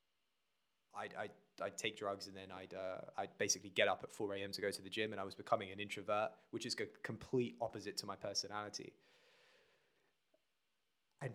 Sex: male